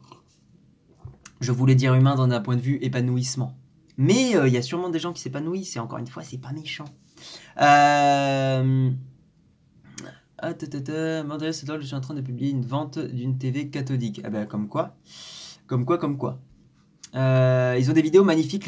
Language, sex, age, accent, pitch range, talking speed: French, male, 20-39, French, 125-175 Hz, 185 wpm